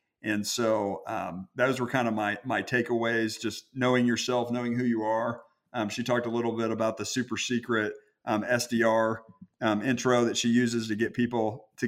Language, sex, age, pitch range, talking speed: English, male, 50-69, 110-125 Hz, 190 wpm